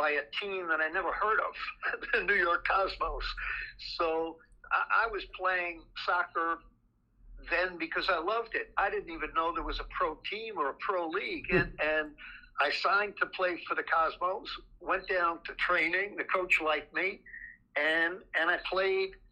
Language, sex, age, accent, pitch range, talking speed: English, male, 60-79, American, 165-205 Hz, 175 wpm